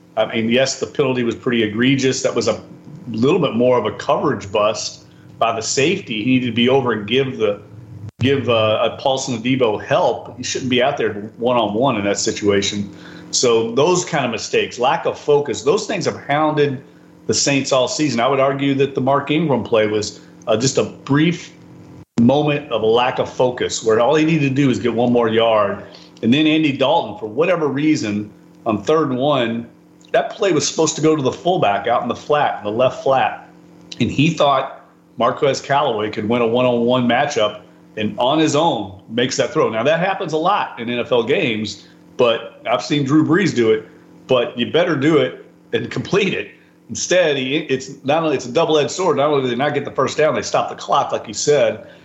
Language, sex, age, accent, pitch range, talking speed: English, male, 40-59, American, 120-150 Hz, 210 wpm